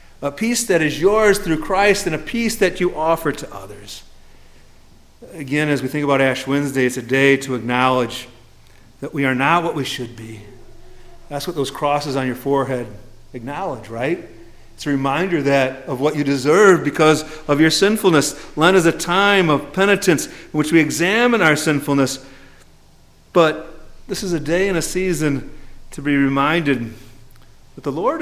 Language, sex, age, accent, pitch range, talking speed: English, male, 40-59, American, 125-175 Hz, 175 wpm